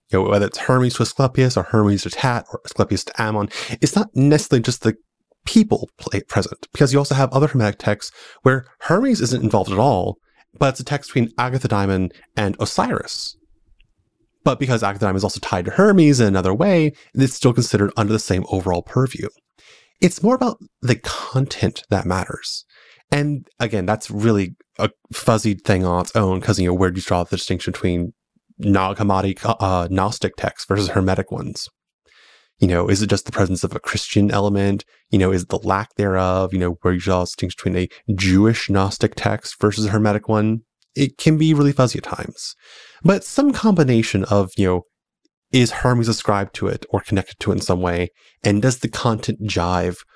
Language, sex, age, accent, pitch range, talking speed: English, male, 30-49, American, 95-130 Hz, 190 wpm